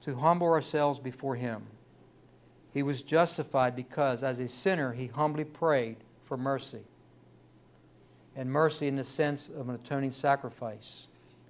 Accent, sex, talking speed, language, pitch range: American, male, 135 wpm, English, 125-155 Hz